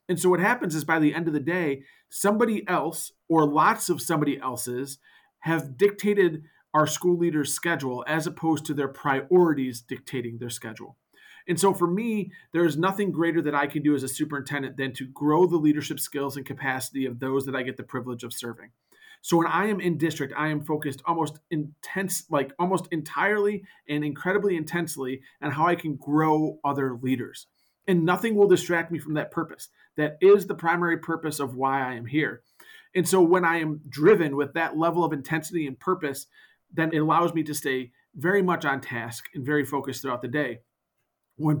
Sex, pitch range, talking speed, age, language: male, 140-175 Hz, 195 wpm, 40-59, English